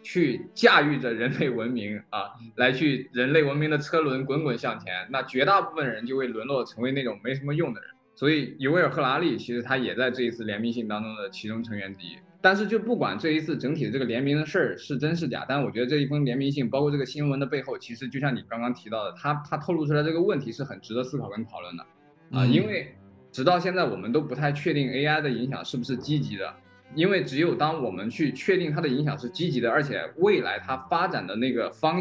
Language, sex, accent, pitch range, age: Chinese, male, native, 120-160 Hz, 20-39